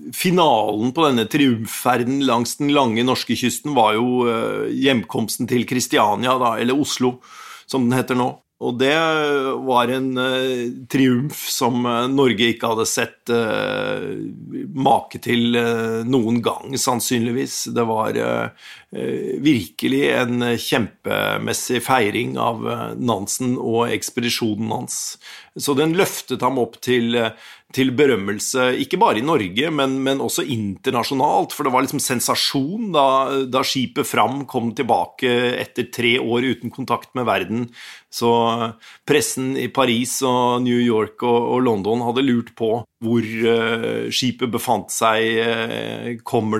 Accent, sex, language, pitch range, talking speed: native, male, Swedish, 115-135 Hz, 125 wpm